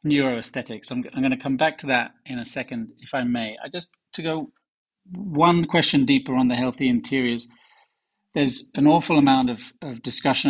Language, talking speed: English, 195 wpm